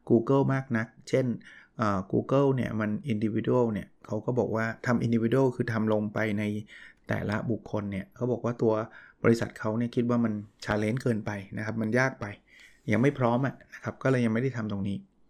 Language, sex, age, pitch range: Thai, male, 20-39, 110-130 Hz